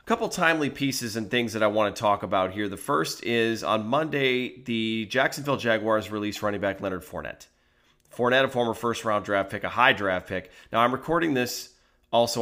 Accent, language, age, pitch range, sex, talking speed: American, English, 30-49, 100-130 Hz, male, 200 wpm